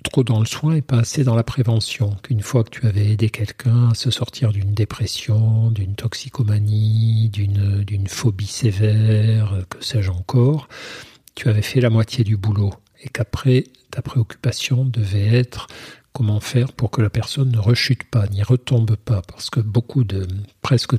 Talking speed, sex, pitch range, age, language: 170 wpm, male, 105-130 Hz, 50-69, French